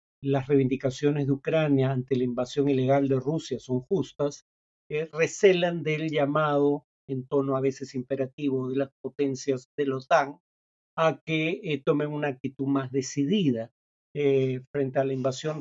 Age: 50-69